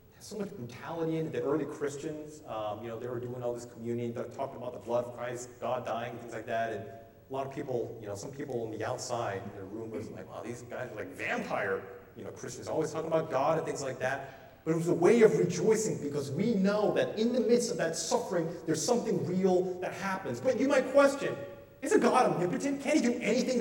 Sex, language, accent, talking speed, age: male, English, American, 245 wpm, 30-49